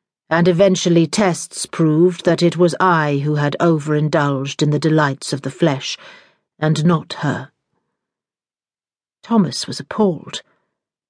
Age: 50-69